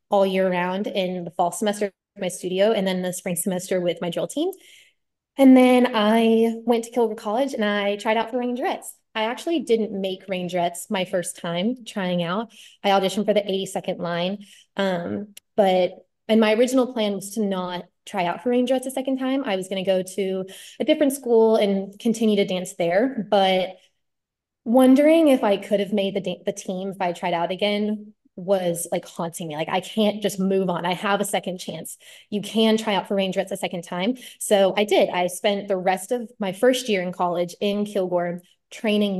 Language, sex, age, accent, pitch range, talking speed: English, female, 20-39, American, 185-220 Hz, 200 wpm